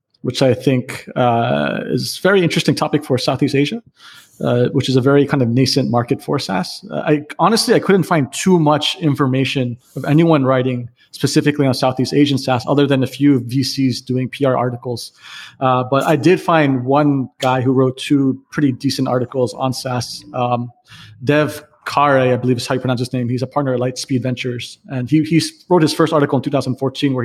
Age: 30-49